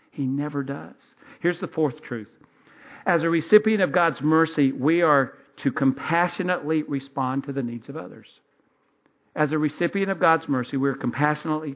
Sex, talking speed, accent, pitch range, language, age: male, 165 wpm, American, 125-155 Hz, English, 50-69